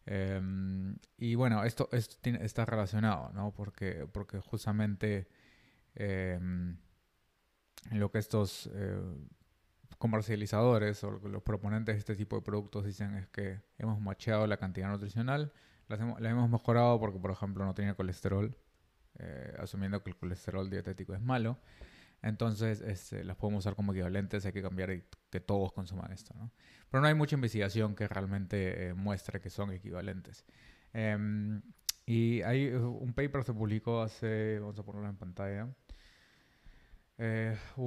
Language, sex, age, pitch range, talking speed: Spanish, male, 20-39, 95-115 Hz, 145 wpm